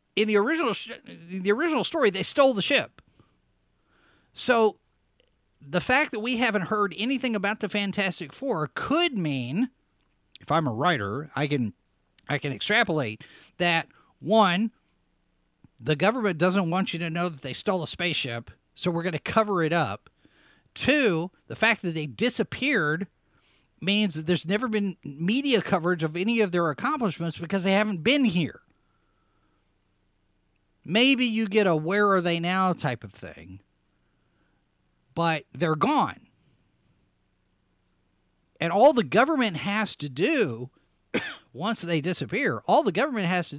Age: 50-69